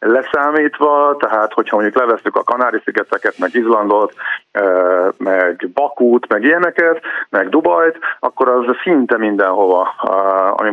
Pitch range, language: 110-140 Hz, Hungarian